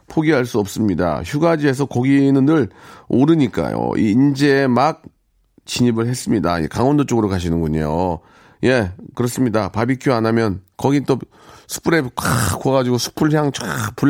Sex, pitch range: male, 105-145 Hz